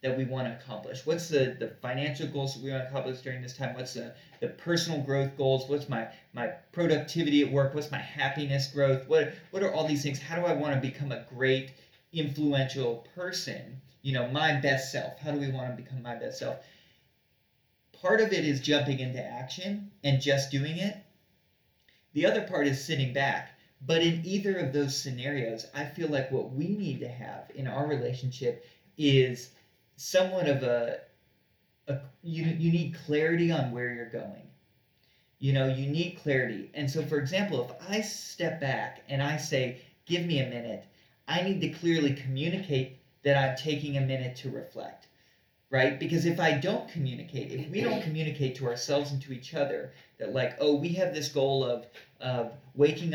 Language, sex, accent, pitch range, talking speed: English, male, American, 130-155 Hz, 190 wpm